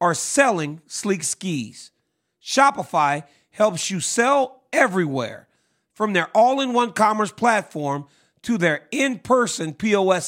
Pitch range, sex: 165-230 Hz, male